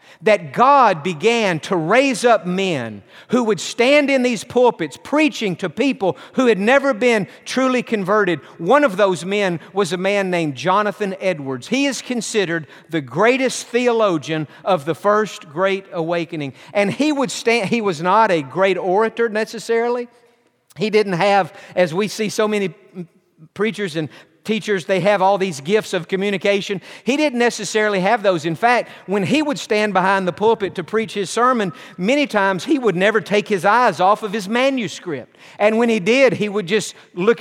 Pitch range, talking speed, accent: 185-235 Hz, 175 wpm, American